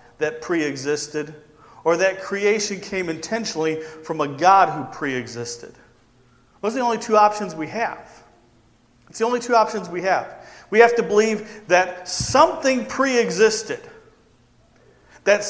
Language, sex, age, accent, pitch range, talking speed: English, male, 40-59, American, 150-220 Hz, 145 wpm